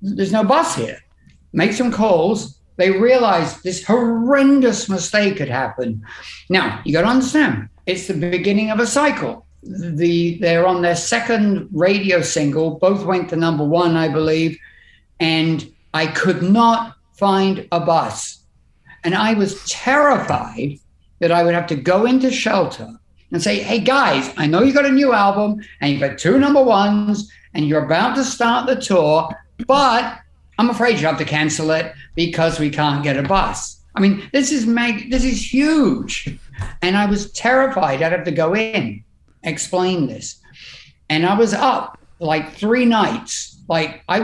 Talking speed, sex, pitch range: 165 wpm, male, 150-220 Hz